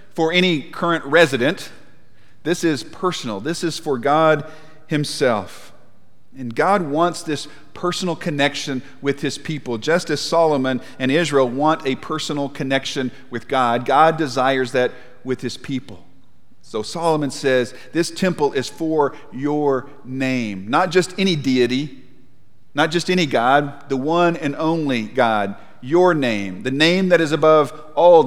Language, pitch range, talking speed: English, 130-165 Hz, 145 wpm